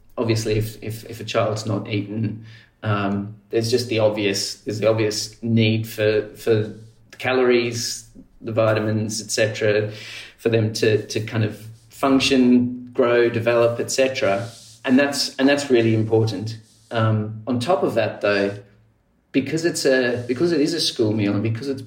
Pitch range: 110-120 Hz